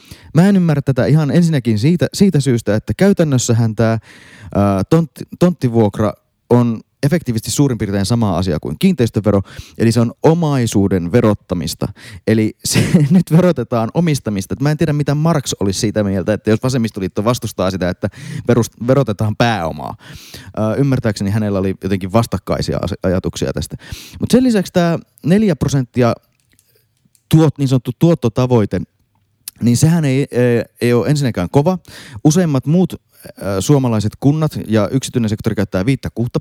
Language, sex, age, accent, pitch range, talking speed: Finnish, male, 30-49, native, 105-145 Hz, 130 wpm